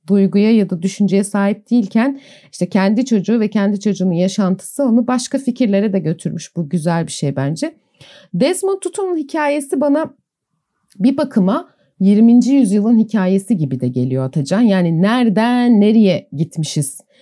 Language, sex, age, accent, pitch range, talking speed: Turkish, female, 40-59, native, 180-240 Hz, 140 wpm